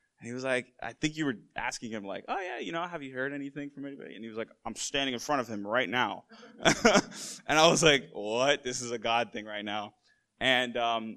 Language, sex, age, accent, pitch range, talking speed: English, male, 20-39, American, 105-130 Hz, 255 wpm